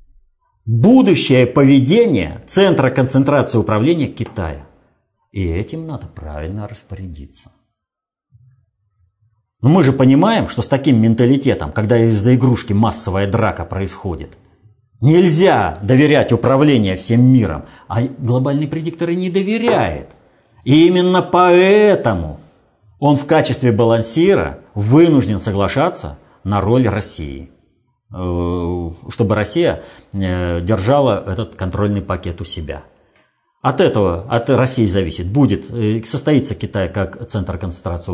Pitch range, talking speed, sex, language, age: 95-130 Hz, 105 wpm, male, Russian, 50-69